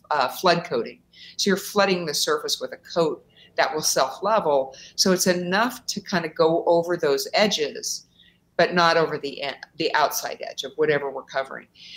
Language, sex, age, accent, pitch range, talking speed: English, female, 50-69, American, 150-185 Hz, 180 wpm